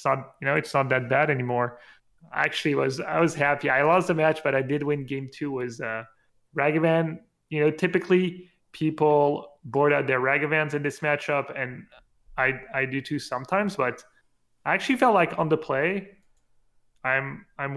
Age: 20-39